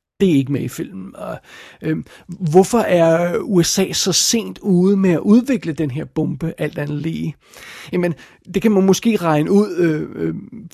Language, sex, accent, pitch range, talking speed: Danish, male, native, 160-195 Hz, 175 wpm